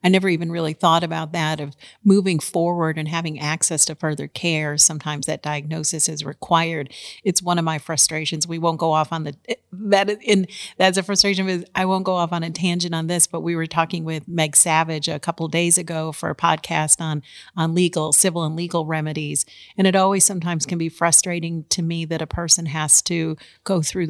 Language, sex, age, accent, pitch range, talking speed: English, female, 40-59, American, 155-175 Hz, 210 wpm